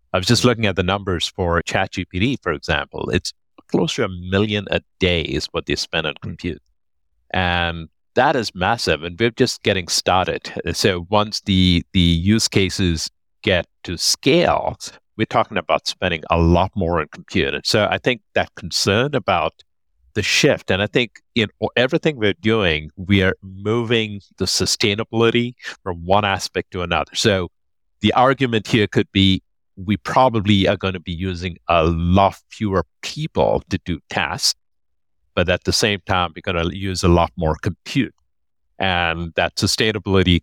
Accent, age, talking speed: American, 50-69, 165 wpm